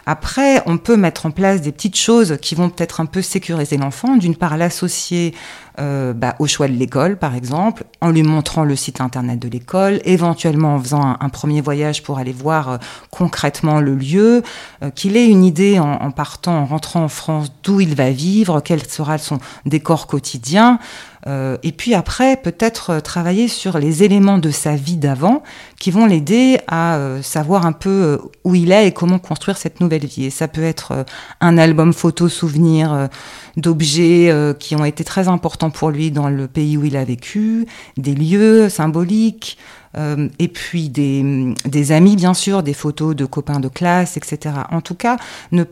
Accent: French